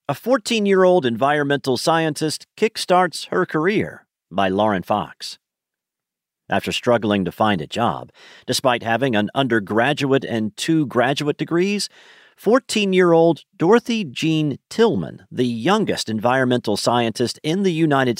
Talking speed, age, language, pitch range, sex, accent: 120 wpm, 40-59, English, 105-165 Hz, male, American